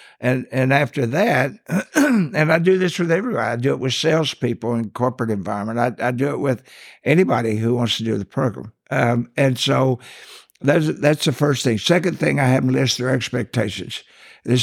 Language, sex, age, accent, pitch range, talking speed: English, male, 60-79, American, 115-145 Hz, 195 wpm